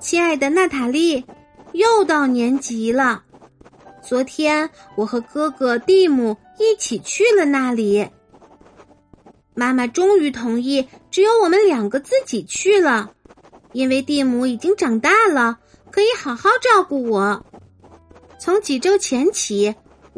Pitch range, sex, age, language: 250-370 Hz, female, 50-69, Chinese